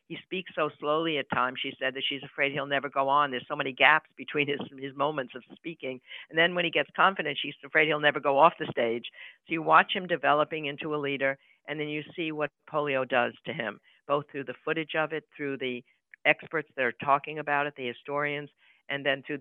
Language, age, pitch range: English, 60-79, 130-150 Hz